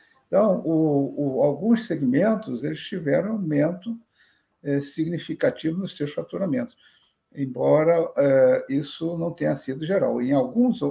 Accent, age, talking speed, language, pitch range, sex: Brazilian, 60-79, 120 wpm, Portuguese, 135-180 Hz, male